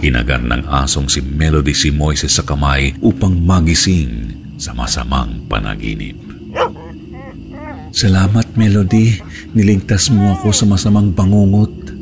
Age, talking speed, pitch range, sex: 50-69, 110 wpm, 70-90 Hz, male